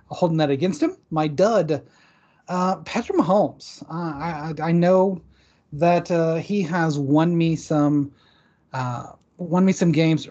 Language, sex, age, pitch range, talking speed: English, male, 30-49, 140-170 Hz, 145 wpm